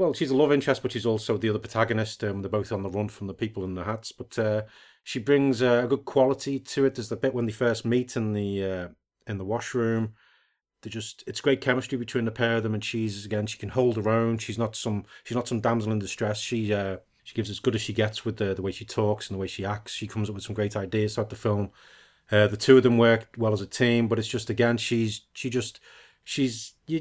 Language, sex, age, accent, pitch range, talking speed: English, male, 30-49, British, 105-120 Hz, 275 wpm